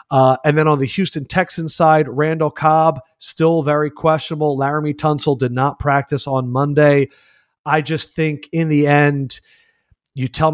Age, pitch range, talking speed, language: 30-49, 130-150 Hz, 160 wpm, English